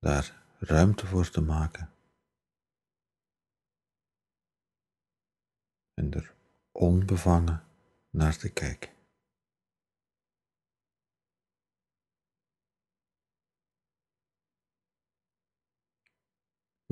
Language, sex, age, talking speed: Dutch, male, 50-69, 45 wpm